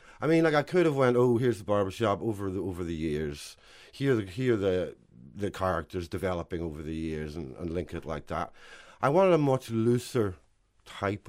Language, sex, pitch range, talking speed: English, male, 90-130 Hz, 200 wpm